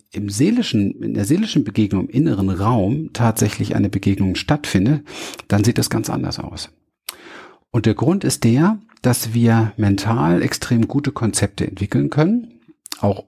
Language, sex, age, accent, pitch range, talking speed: German, male, 50-69, German, 100-130 Hz, 150 wpm